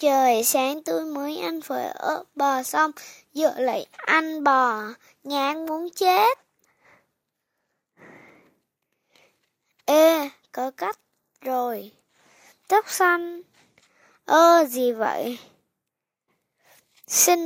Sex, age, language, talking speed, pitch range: female, 10-29, Vietnamese, 95 wpm, 250-320 Hz